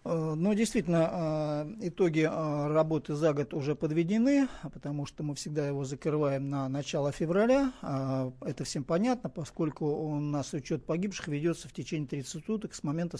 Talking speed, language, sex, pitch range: 145 wpm, Russian, male, 145-170 Hz